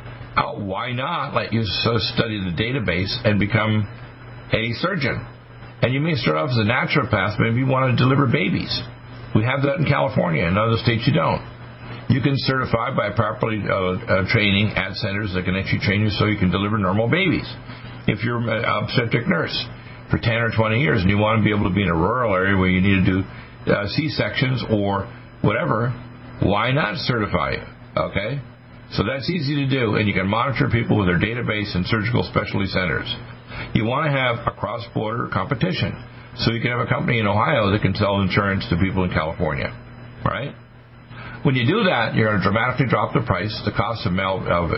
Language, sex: English, male